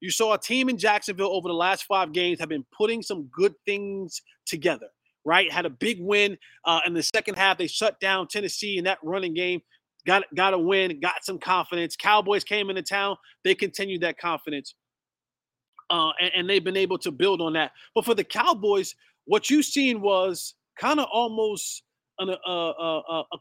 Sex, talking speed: male, 185 wpm